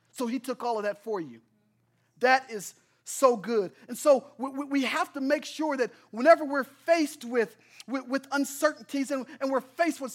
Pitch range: 215-285 Hz